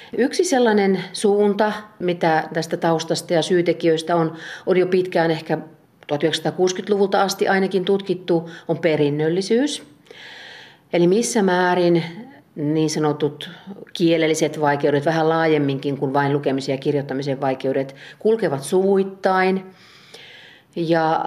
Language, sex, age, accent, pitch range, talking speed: Finnish, female, 40-59, native, 145-175 Hz, 105 wpm